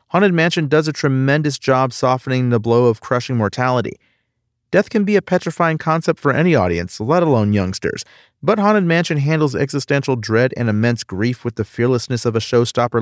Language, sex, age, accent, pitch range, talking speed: English, male, 40-59, American, 105-135 Hz, 180 wpm